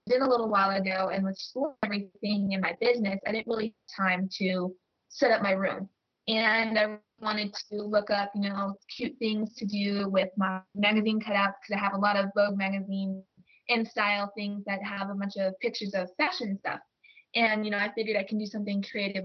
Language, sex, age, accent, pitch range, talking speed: English, female, 20-39, American, 195-215 Hz, 205 wpm